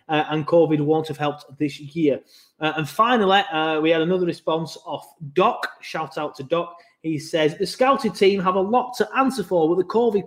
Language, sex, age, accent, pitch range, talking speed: English, male, 20-39, British, 140-180 Hz, 210 wpm